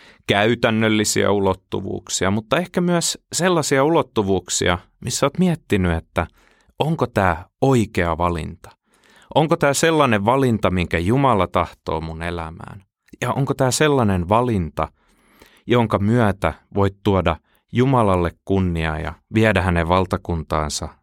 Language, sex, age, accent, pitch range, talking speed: Finnish, male, 30-49, native, 85-125 Hz, 110 wpm